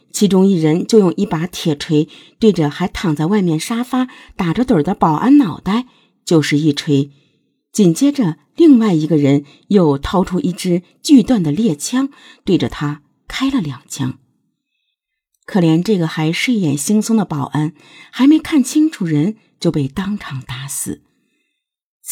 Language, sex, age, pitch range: Chinese, female, 50-69, 150-240 Hz